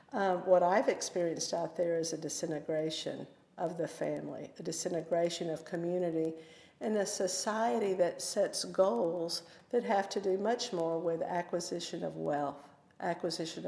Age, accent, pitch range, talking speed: 50-69, American, 175-225 Hz, 145 wpm